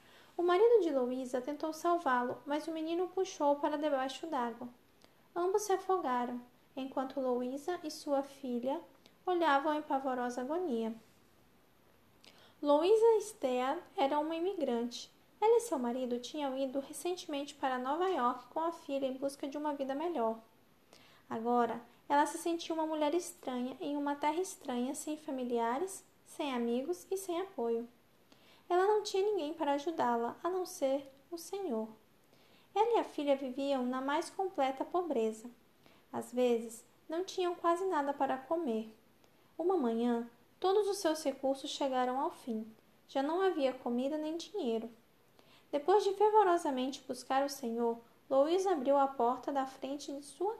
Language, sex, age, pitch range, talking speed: Portuguese, female, 10-29, 255-340 Hz, 150 wpm